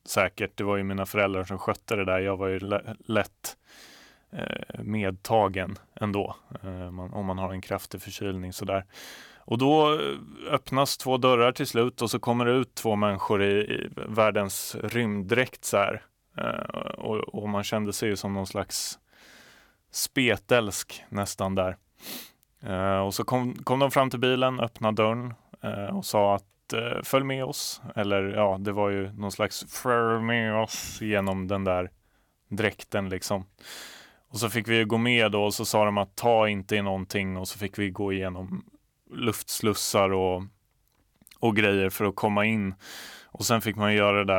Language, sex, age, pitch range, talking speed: Swedish, male, 20-39, 95-110 Hz, 180 wpm